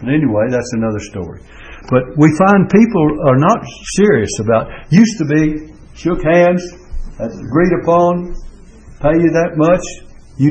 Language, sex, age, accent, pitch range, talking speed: English, male, 60-79, American, 115-165 Hz, 135 wpm